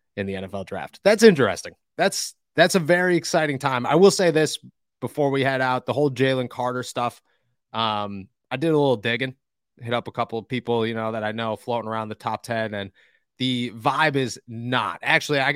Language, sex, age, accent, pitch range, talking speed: English, male, 20-39, American, 110-140 Hz, 210 wpm